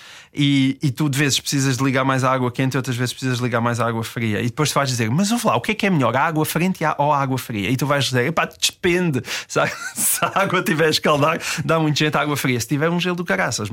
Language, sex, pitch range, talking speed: Portuguese, male, 120-155 Hz, 295 wpm